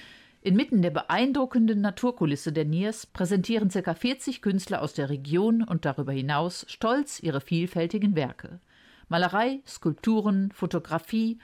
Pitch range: 155-215 Hz